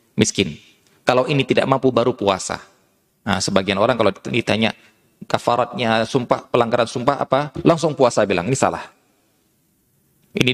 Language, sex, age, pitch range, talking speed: Indonesian, male, 20-39, 105-130 Hz, 130 wpm